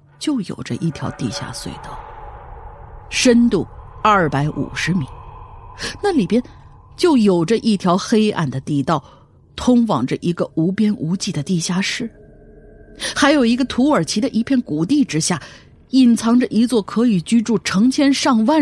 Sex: female